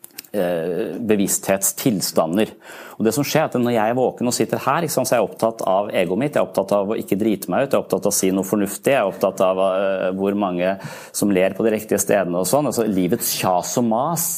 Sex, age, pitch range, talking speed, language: male, 30-49, 100-125 Hz, 235 wpm, Danish